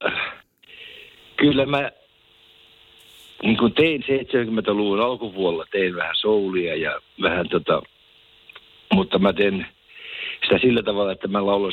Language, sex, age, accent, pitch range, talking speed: Finnish, male, 60-79, native, 90-120 Hz, 105 wpm